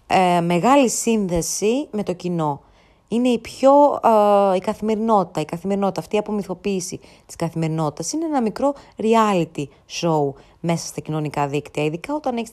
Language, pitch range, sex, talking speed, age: Greek, 165-220 Hz, female, 140 wpm, 20-39